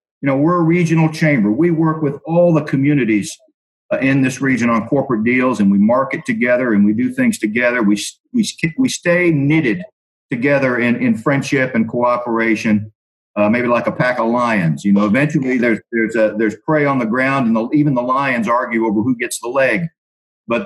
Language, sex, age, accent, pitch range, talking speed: English, male, 50-69, American, 110-155 Hz, 200 wpm